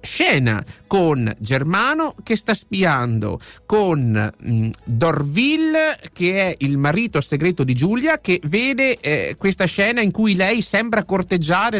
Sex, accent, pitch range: male, native, 135-195 Hz